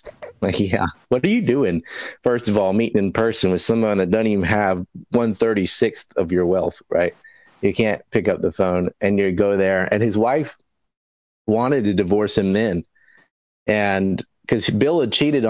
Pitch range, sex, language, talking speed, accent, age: 90-105 Hz, male, English, 180 wpm, American, 30-49